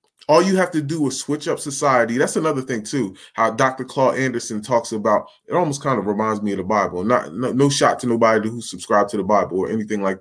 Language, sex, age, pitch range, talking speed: English, male, 20-39, 110-155 Hz, 245 wpm